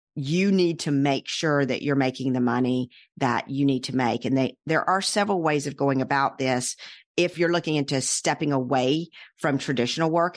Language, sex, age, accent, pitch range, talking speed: English, female, 50-69, American, 140-170 Hz, 195 wpm